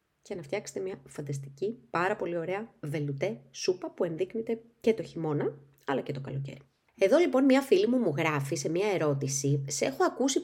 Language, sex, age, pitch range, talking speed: Greek, female, 20-39, 150-230 Hz, 185 wpm